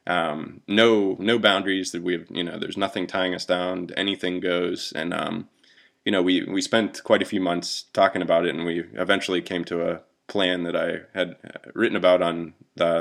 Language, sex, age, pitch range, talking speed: English, male, 20-39, 85-95 Hz, 205 wpm